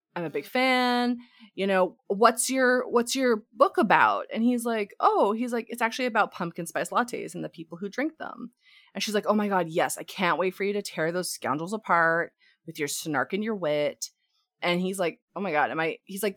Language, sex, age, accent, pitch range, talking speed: English, female, 20-39, American, 175-250 Hz, 230 wpm